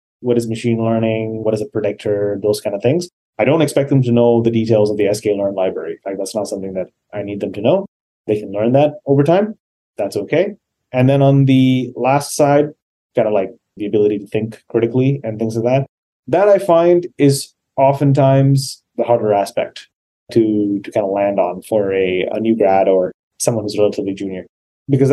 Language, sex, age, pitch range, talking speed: English, male, 30-49, 105-130 Hz, 205 wpm